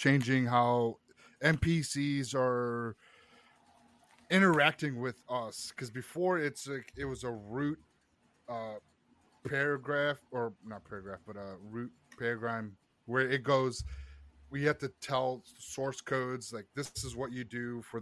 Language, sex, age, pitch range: English, male, 30-49, 115-140 Hz